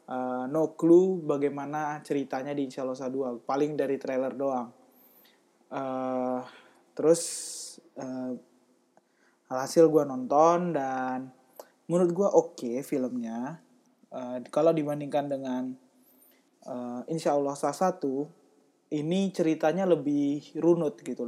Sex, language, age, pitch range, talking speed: male, Indonesian, 20-39, 130-165 Hz, 110 wpm